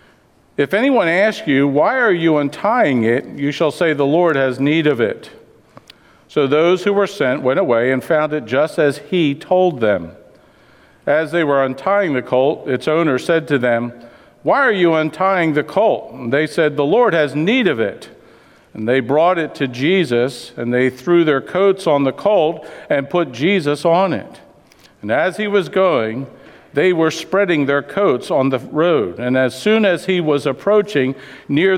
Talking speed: 185 wpm